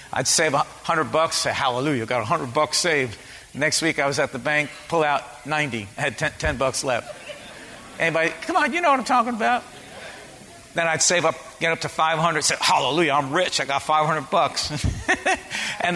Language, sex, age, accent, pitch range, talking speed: English, male, 50-69, American, 150-195 Hz, 205 wpm